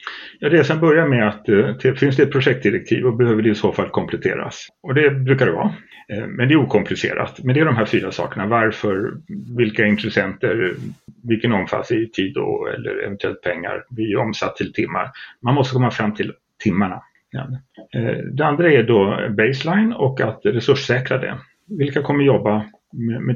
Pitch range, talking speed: 110-135 Hz, 170 wpm